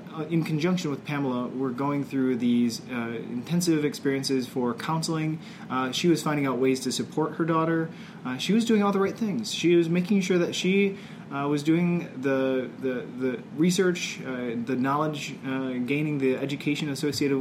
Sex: male